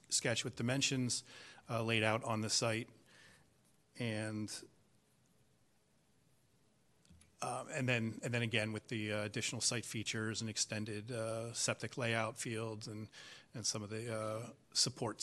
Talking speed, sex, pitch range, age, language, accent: 140 wpm, male, 110-125 Hz, 40-59, English, American